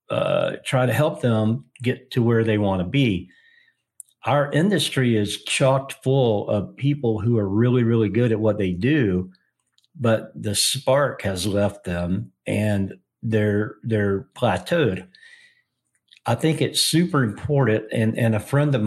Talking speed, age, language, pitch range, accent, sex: 155 wpm, 50-69, English, 105-130 Hz, American, male